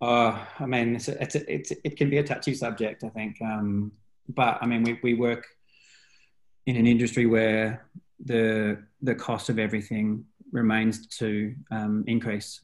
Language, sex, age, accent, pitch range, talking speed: English, male, 20-39, Australian, 105-120 Hz, 145 wpm